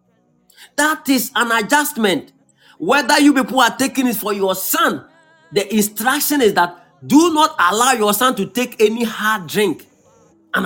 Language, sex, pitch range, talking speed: English, male, 175-245 Hz, 160 wpm